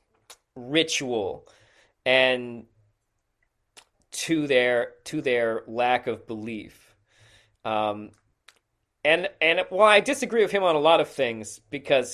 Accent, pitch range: American, 110-145 Hz